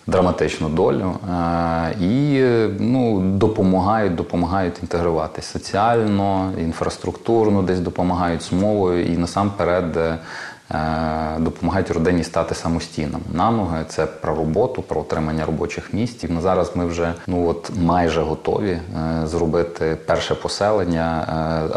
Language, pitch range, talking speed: Ukrainian, 80-90 Hz, 120 wpm